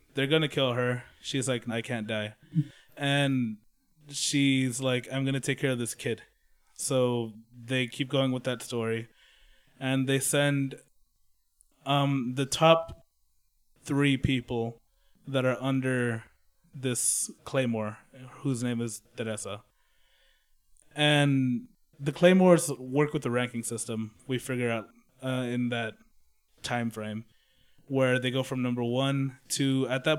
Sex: male